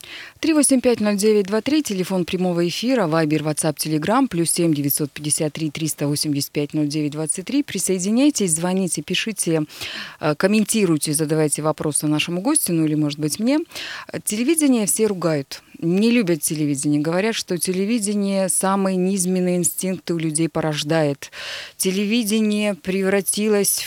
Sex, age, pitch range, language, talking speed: female, 20-39, 160-205 Hz, Russian, 100 wpm